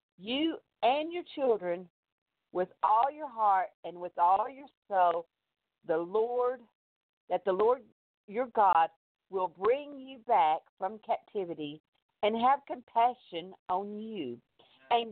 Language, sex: English, female